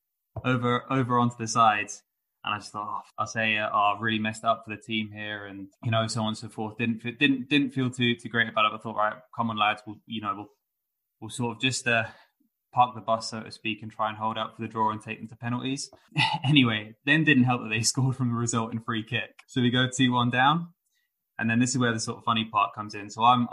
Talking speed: 265 wpm